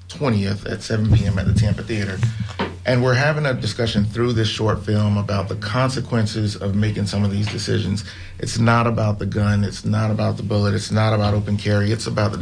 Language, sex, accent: English, male, American